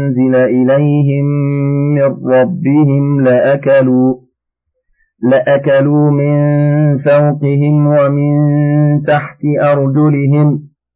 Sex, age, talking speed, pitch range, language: male, 50-69, 60 wpm, 125-145 Hz, Arabic